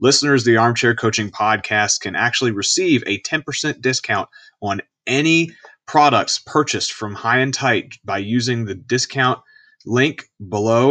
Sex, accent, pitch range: male, American, 110-140 Hz